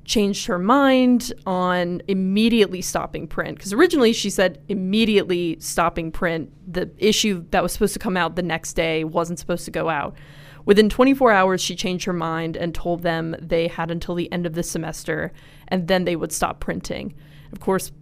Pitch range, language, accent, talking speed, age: 165-200 Hz, English, American, 185 wpm, 20-39